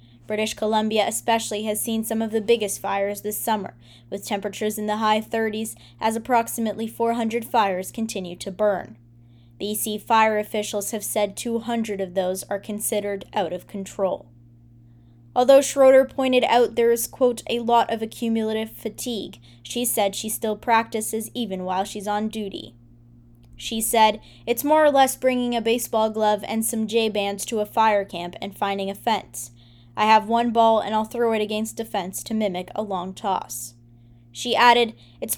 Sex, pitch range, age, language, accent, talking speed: female, 195-235 Hz, 10-29, English, American, 170 wpm